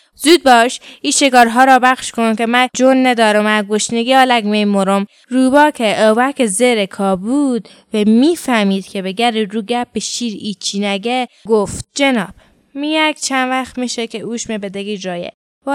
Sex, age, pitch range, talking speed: female, 20-39, 200-260 Hz, 160 wpm